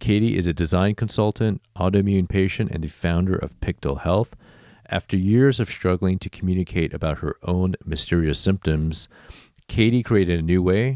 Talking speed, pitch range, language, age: 160 wpm, 80-100 Hz, English, 40-59